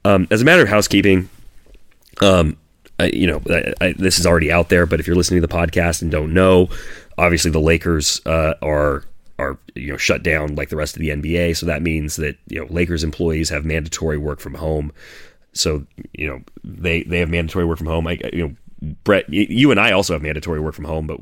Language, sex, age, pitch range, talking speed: English, male, 30-49, 75-85 Hz, 225 wpm